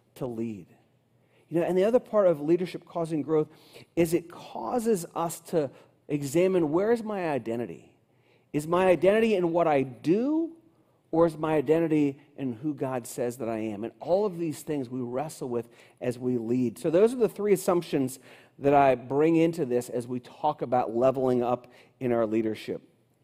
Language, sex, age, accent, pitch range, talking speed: English, male, 40-59, American, 125-165 Hz, 185 wpm